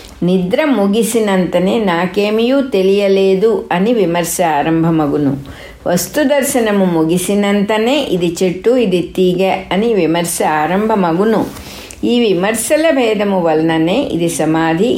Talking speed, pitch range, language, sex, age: 85 wpm, 165-225 Hz, English, female, 60-79